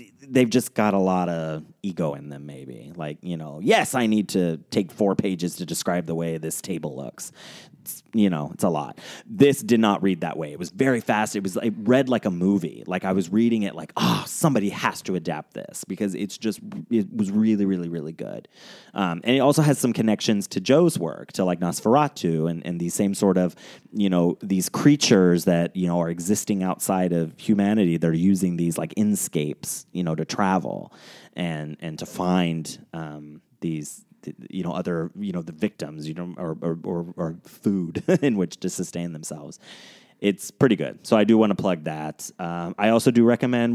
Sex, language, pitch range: male, English, 85-105 Hz